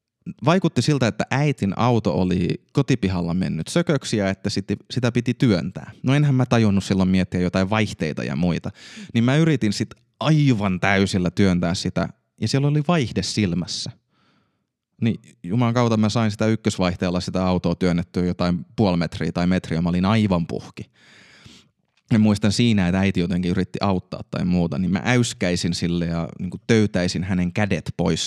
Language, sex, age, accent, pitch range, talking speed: Finnish, male, 20-39, native, 90-115 Hz, 155 wpm